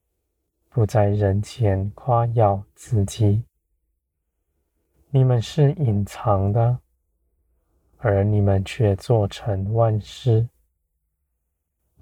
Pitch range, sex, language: 75-110 Hz, male, Chinese